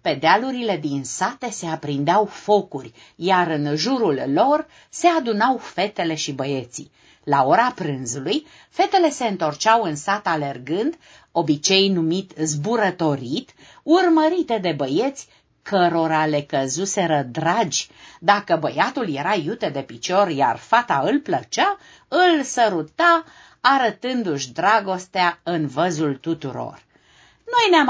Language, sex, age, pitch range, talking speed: Romanian, female, 50-69, 155-255 Hz, 115 wpm